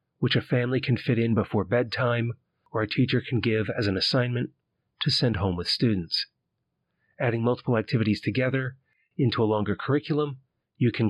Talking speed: 170 wpm